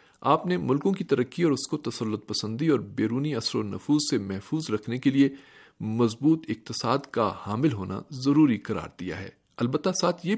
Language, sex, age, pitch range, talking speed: Urdu, male, 50-69, 110-145 Hz, 185 wpm